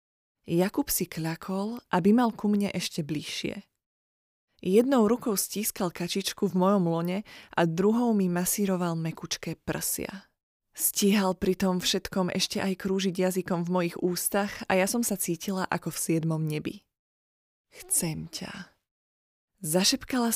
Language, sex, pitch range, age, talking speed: Slovak, female, 170-205 Hz, 20-39, 135 wpm